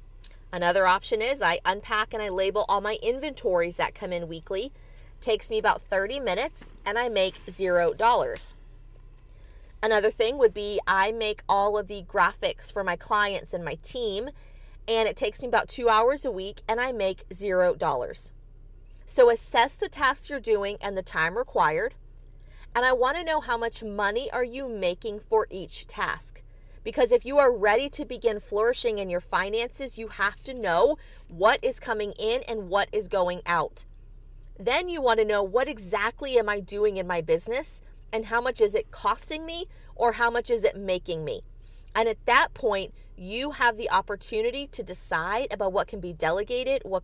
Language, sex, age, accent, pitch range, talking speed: English, female, 30-49, American, 195-280 Hz, 185 wpm